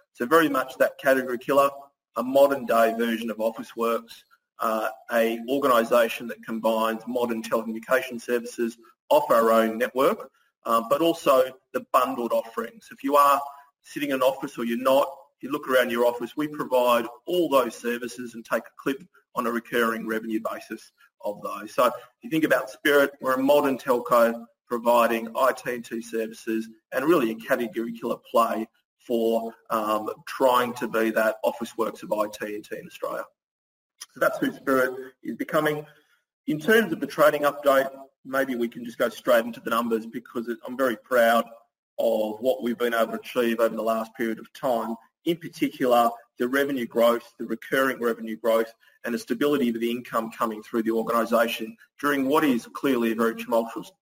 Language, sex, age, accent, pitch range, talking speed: English, male, 30-49, Australian, 115-135 Hz, 175 wpm